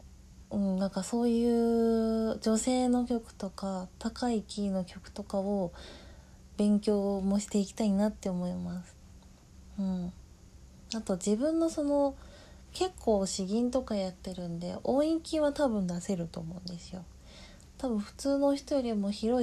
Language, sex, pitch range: Japanese, female, 190-225 Hz